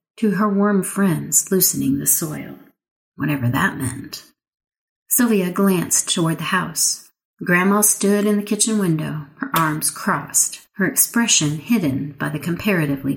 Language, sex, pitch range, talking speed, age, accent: English, female, 150-205 Hz, 135 wpm, 40-59, American